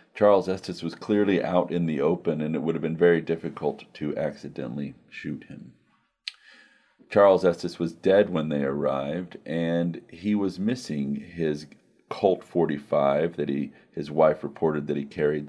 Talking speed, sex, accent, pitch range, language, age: 160 wpm, male, American, 75-90 Hz, English, 40-59